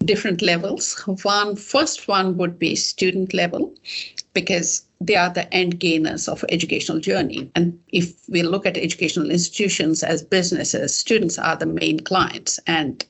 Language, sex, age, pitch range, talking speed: English, female, 60-79, 170-205 Hz, 150 wpm